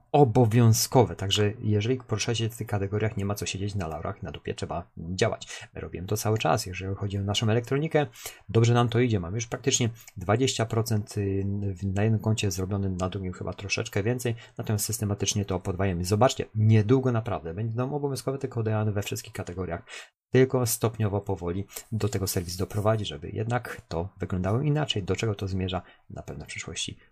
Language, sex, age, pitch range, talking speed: Polish, male, 30-49, 100-120 Hz, 175 wpm